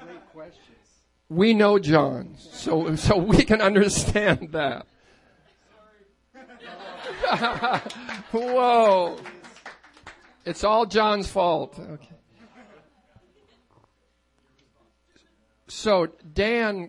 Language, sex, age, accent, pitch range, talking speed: English, male, 50-69, American, 170-210 Hz, 60 wpm